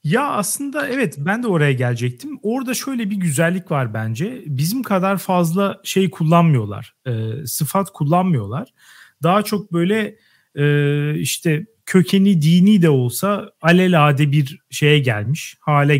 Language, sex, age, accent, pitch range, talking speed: Turkish, male, 40-59, native, 130-195 Hz, 125 wpm